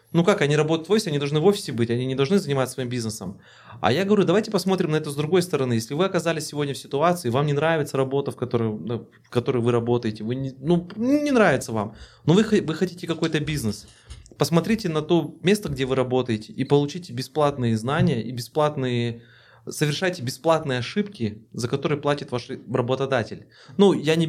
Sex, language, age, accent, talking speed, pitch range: male, Russian, 20-39, native, 190 wpm, 120-160 Hz